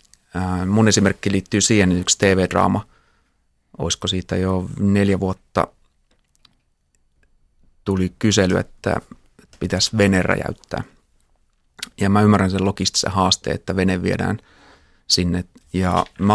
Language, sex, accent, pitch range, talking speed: Finnish, male, native, 90-105 Hz, 110 wpm